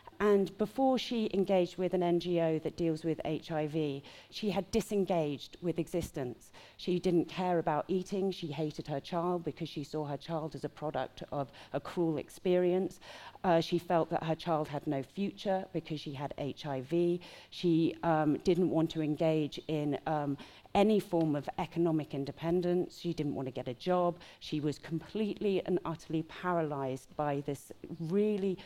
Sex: female